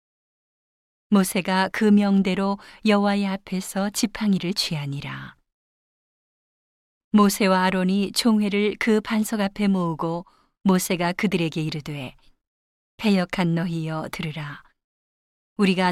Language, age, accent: Korean, 40-59, native